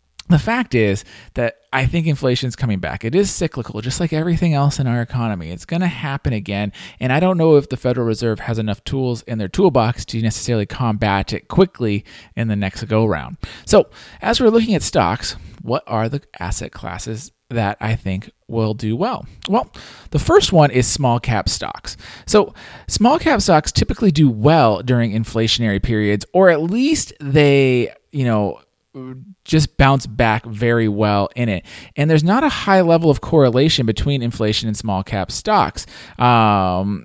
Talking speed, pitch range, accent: 180 wpm, 110-150 Hz, American